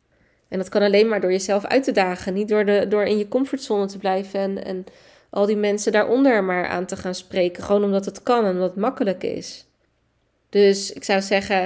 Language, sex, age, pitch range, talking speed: Dutch, female, 20-39, 185-225 Hz, 215 wpm